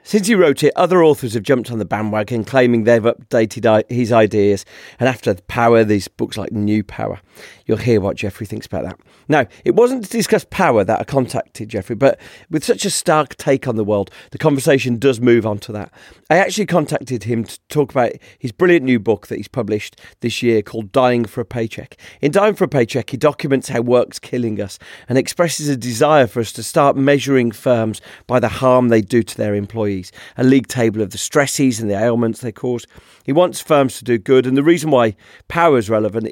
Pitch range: 110-135 Hz